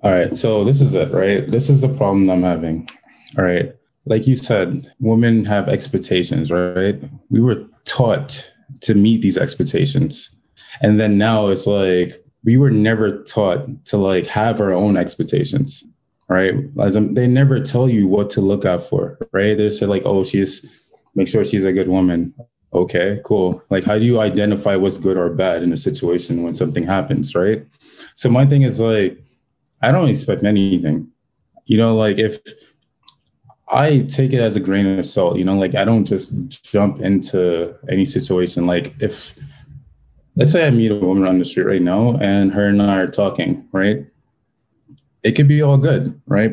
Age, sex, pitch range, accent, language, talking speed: 20-39, male, 95-125 Hz, American, English, 185 wpm